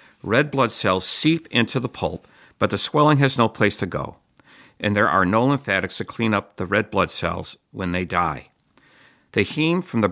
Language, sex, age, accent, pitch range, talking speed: English, male, 50-69, American, 95-125 Hz, 200 wpm